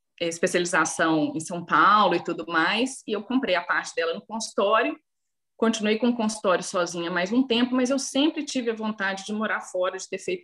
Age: 40-59